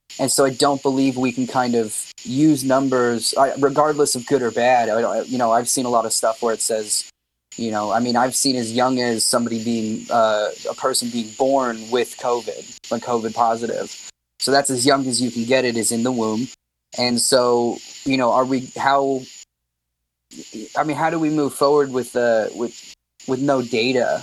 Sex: male